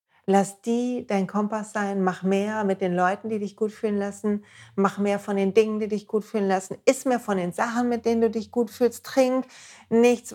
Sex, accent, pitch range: female, German, 190-235 Hz